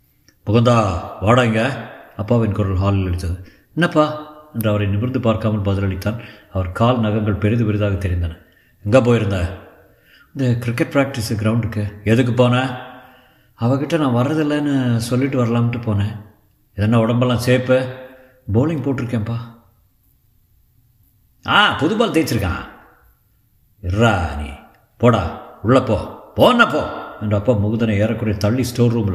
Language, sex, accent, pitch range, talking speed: Tamil, male, native, 105-130 Hz, 110 wpm